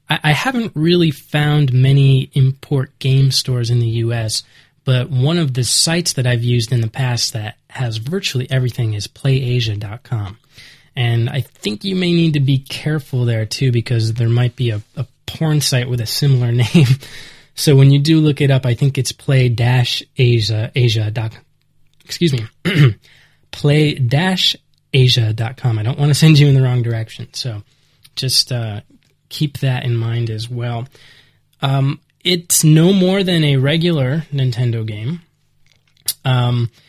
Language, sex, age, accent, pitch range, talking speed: English, male, 20-39, American, 120-145 Hz, 155 wpm